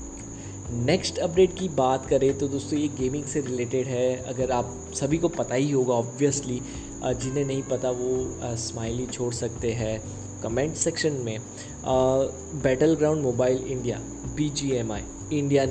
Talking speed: 140 wpm